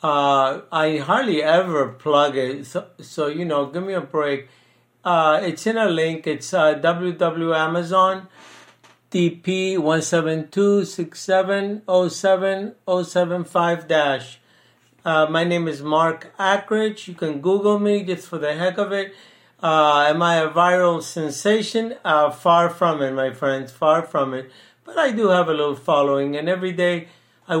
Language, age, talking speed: English, 60-79, 160 wpm